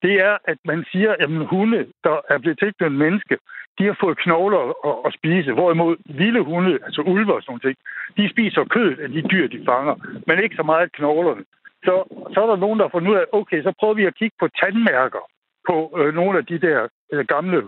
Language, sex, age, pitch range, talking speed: Danish, male, 60-79, 160-205 Hz, 215 wpm